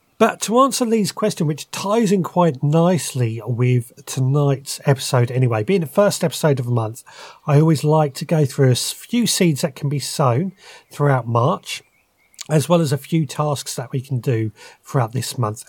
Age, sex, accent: 40-59, male, British